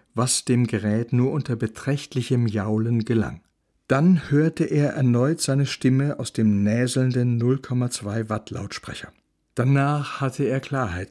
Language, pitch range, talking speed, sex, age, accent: German, 120-150 Hz, 120 wpm, male, 60-79, German